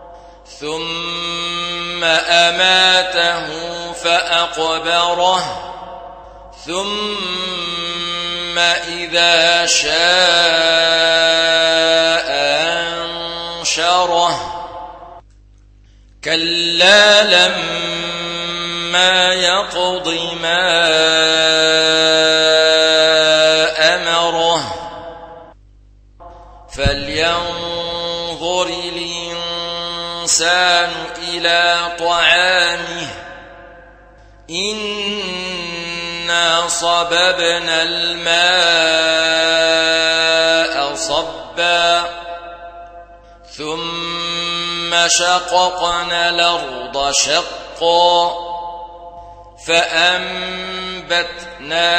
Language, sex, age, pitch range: Arabic, male, 40-59, 170-175 Hz